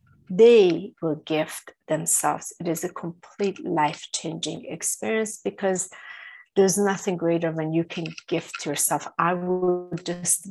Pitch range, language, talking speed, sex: 170-210 Hz, English, 125 wpm, female